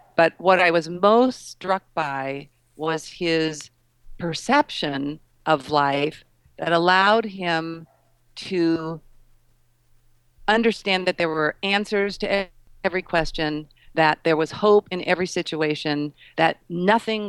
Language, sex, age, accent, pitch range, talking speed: English, female, 50-69, American, 150-190 Hz, 115 wpm